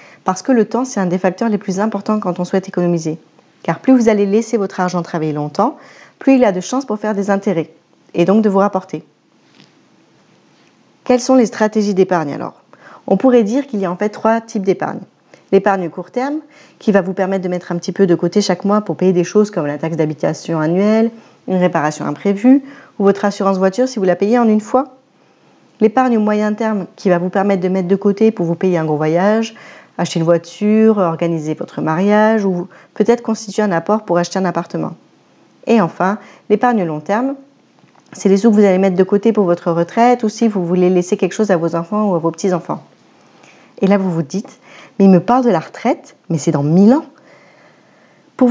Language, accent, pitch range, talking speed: French, French, 180-220 Hz, 220 wpm